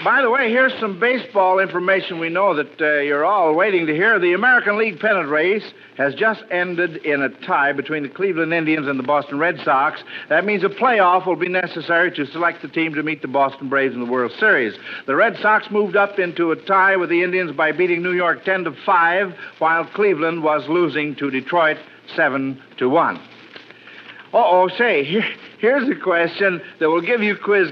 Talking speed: 200 wpm